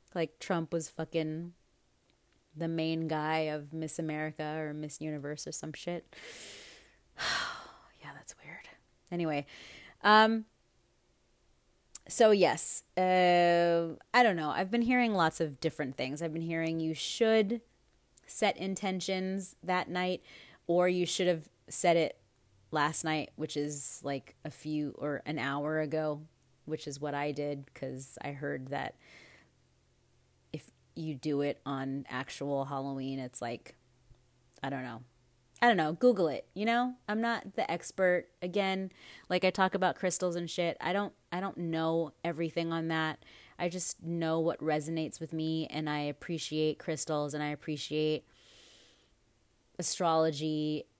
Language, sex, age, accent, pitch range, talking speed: English, female, 30-49, American, 145-175 Hz, 145 wpm